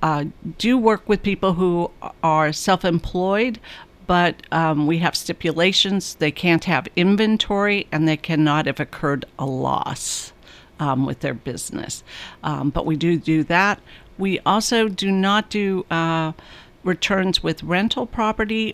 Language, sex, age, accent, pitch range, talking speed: English, female, 50-69, American, 155-195 Hz, 140 wpm